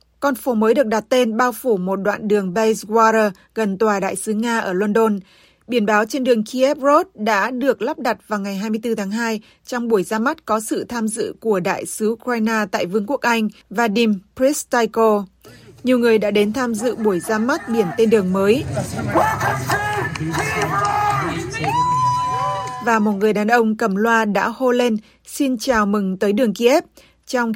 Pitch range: 205-240 Hz